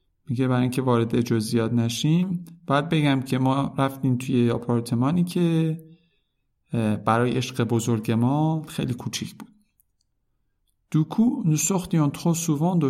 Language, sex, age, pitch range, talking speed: Persian, male, 50-69, 115-160 Hz, 100 wpm